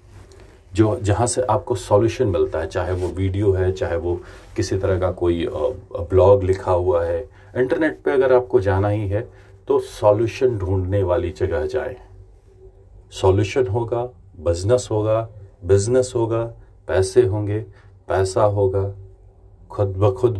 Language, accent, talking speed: Hindi, native, 140 wpm